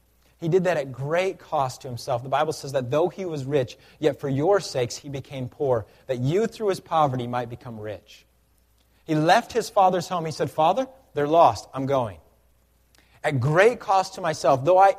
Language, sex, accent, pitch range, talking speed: English, male, American, 105-150 Hz, 200 wpm